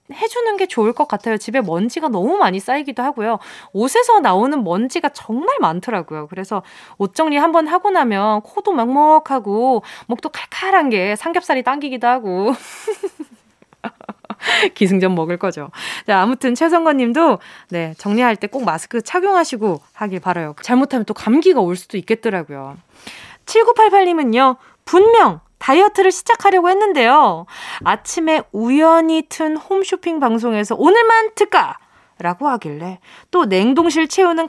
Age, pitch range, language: 20-39, 210-335 Hz, Korean